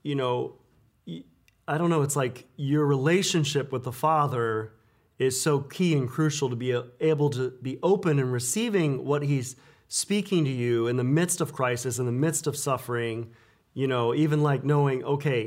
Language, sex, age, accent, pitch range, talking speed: English, male, 30-49, American, 130-160 Hz, 180 wpm